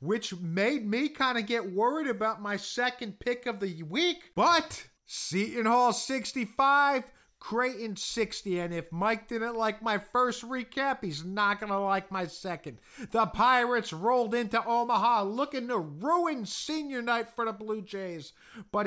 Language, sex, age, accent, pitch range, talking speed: English, male, 50-69, American, 200-240 Hz, 155 wpm